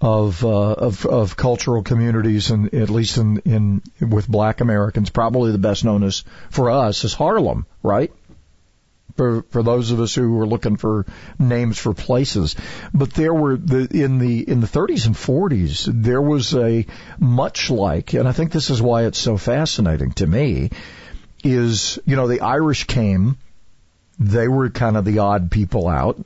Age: 50-69